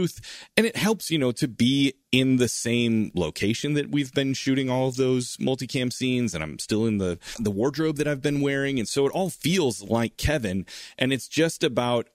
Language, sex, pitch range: English, male, 105-135 Hz